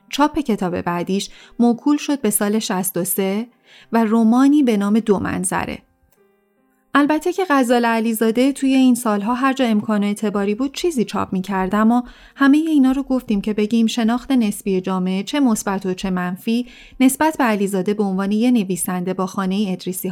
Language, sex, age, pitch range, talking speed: Persian, female, 30-49, 195-245 Hz, 165 wpm